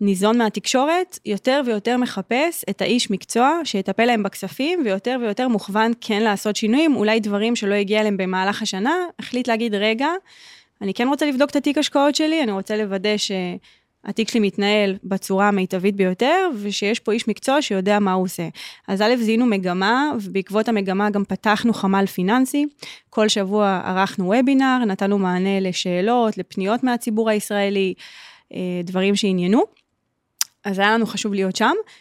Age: 20-39